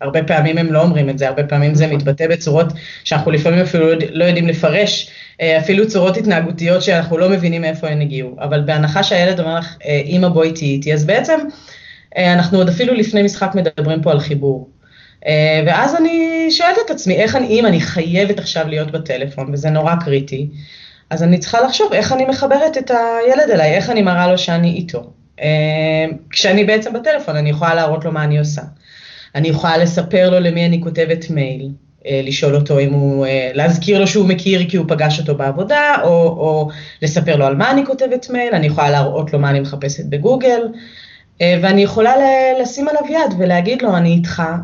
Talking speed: 190 wpm